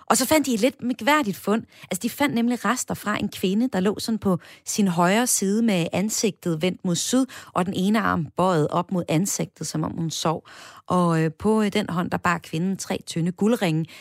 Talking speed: 215 wpm